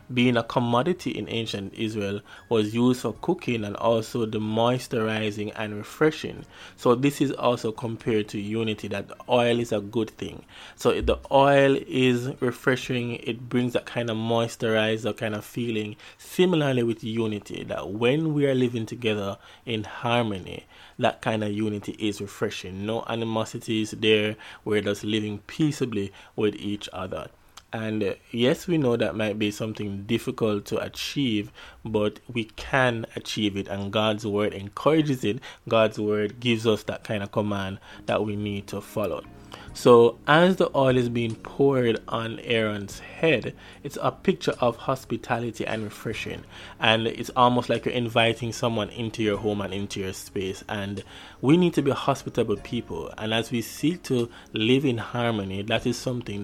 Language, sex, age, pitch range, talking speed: English, male, 20-39, 105-120 Hz, 165 wpm